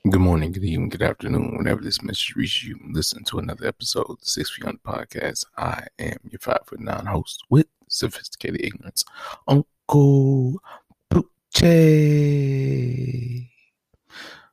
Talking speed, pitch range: 130 wpm, 100-130 Hz